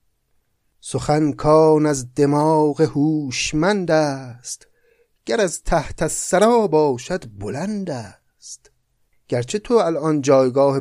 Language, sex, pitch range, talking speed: Persian, male, 120-160 Hz, 95 wpm